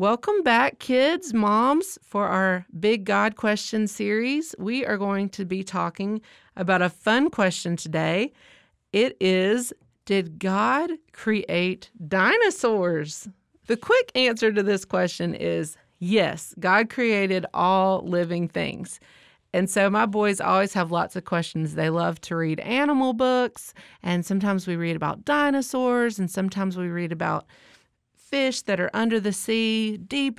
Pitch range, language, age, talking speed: 175-220 Hz, English, 30-49, 145 wpm